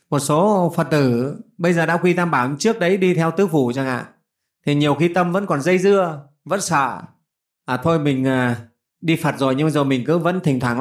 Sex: male